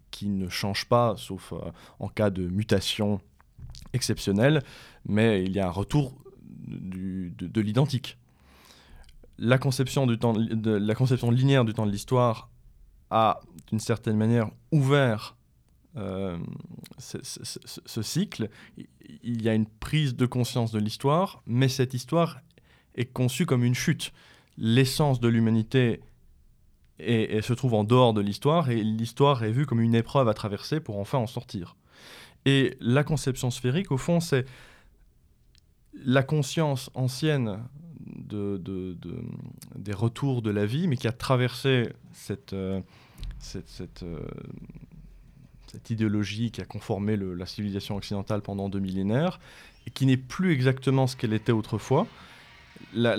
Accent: French